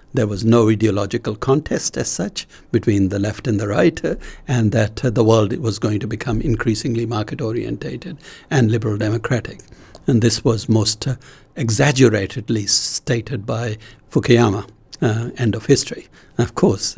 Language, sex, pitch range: English, male, 110-130 Hz